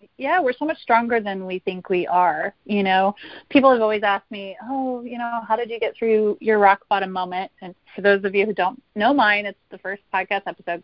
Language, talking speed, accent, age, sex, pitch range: English, 240 wpm, American, 30-49, female, 190-235 Hz